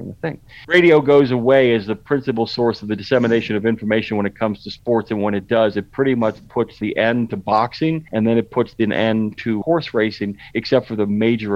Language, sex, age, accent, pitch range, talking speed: English, male, 50-69, American, 110-140 Hz, 230 wpm